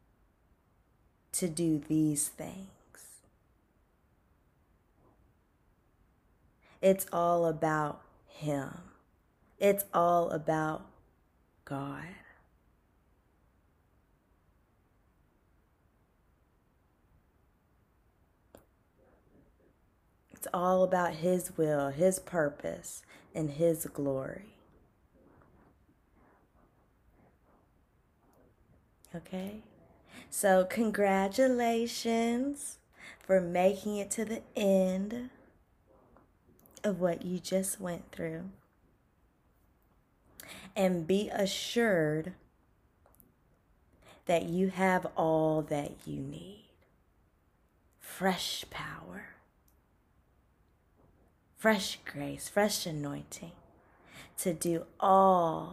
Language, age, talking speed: English, 20-39, 60 wpm